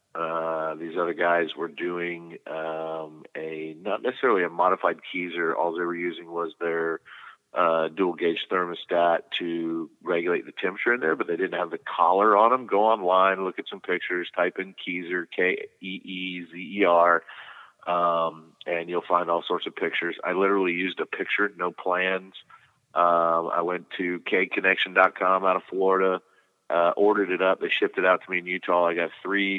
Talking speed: 185 wpm